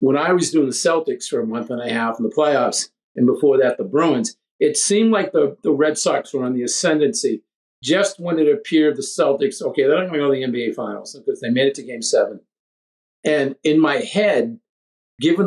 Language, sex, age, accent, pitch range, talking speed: English, male, 50-69, American, 130-200 Hz, 230 wpm